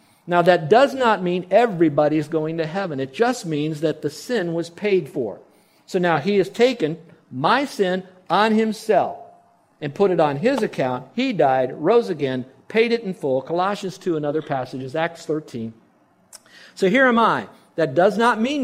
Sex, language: male, English